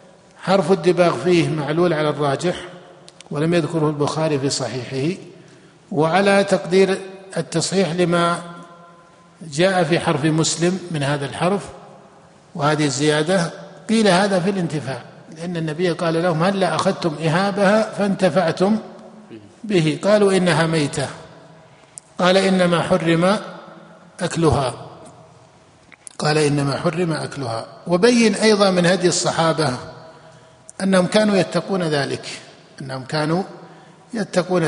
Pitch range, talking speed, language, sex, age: 160-190 Hz, 105 wpm, Arabic, male, 50-69